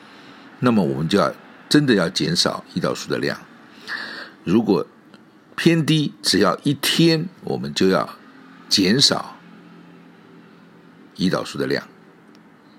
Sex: male